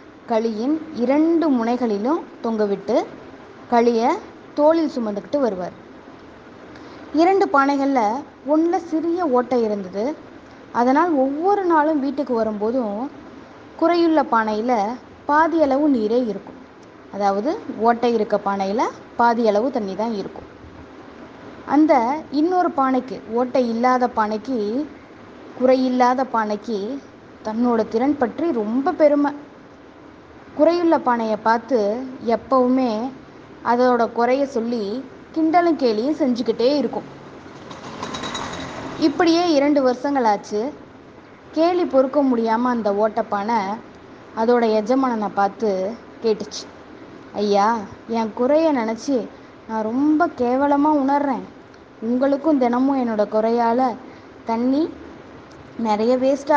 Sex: female